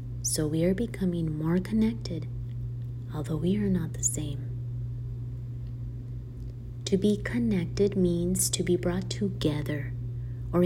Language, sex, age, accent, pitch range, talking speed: English, female, 30-49, American, 120-145 Hz, 120 wpm